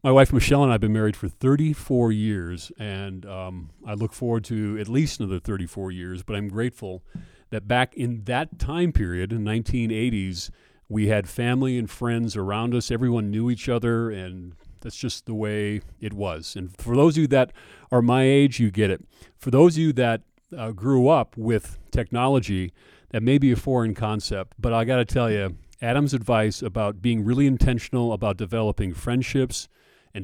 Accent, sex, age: American, male, 40-59